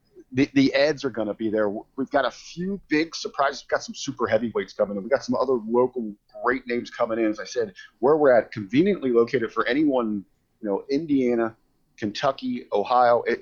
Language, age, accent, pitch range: English, 40-59, American, 105-140 Hz